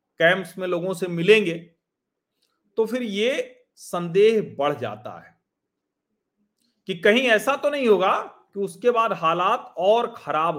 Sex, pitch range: male, 135-200 Hz